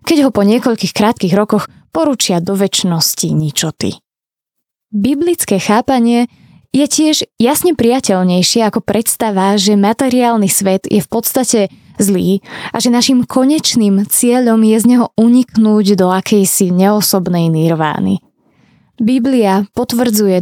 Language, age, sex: Slovak, 20-39, female